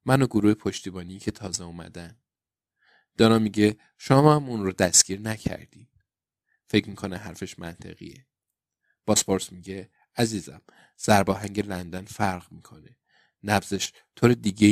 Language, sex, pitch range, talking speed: Persian, male, 95-120 Hz, 120 wpm